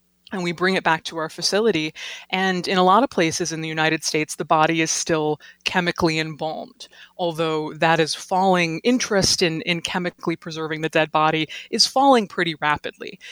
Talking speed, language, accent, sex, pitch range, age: 180 wpm, English, American, female, 160-185 Hz, 20-39